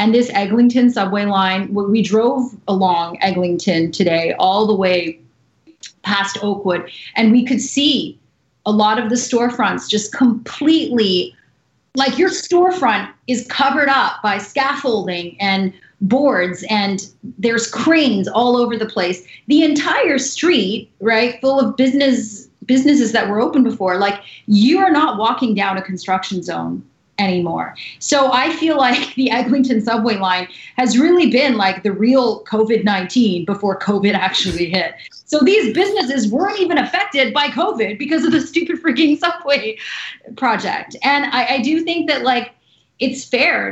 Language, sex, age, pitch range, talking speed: English, female, 30-49, 205-270 Hz, 150 wpm